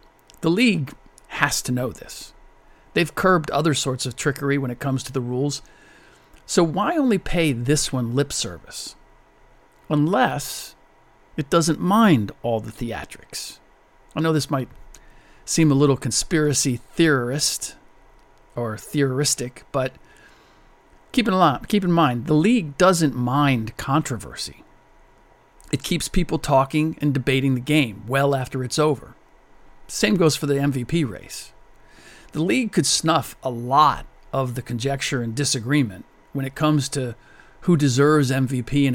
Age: 50-69